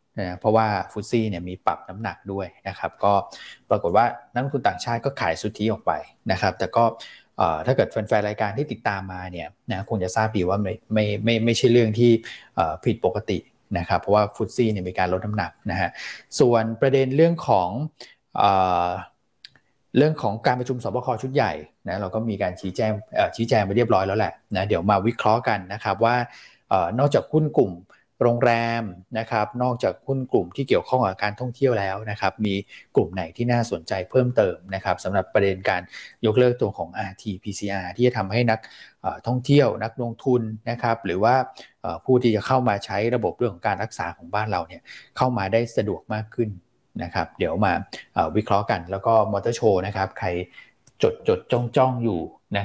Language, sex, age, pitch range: Thai, male, 20-39, 100-120 Hz